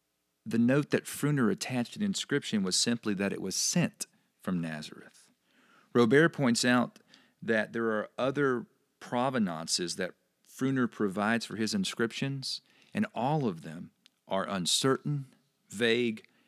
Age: 40-59